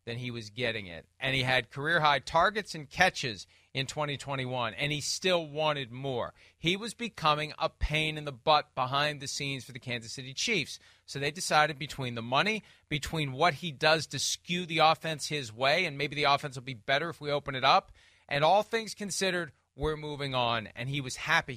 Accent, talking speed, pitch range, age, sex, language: American, 205 wpm, 125-160 Hz, 40-59, male, English